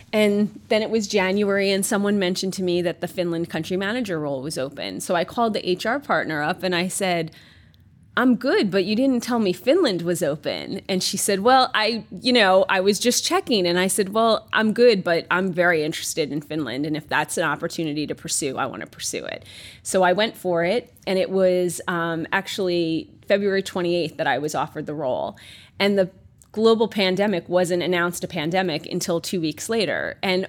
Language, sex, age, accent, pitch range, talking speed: Finnish, female, 30-49, American, 165-195 Hz, 205 wpm